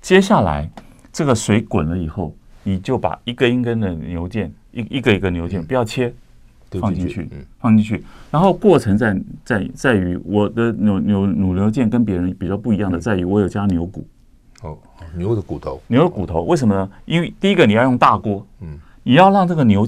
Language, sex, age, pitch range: Chinese, male, 30-49, 95-125 Hz